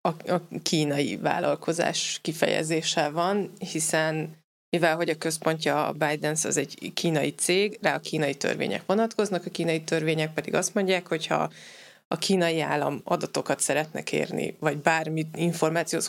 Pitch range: 160-195 Hz